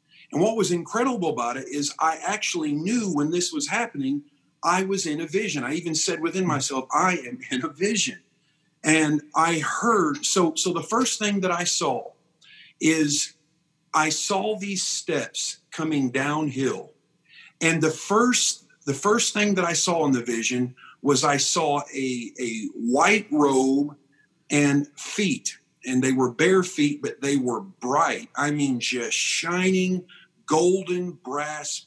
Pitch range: 140-180 Hz